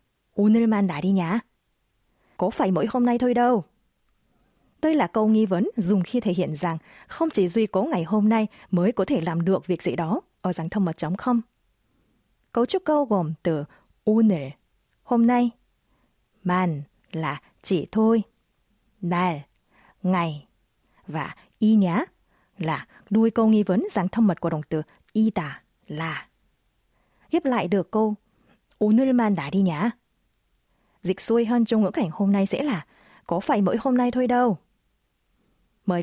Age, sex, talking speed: 20-39, female, 155 wpm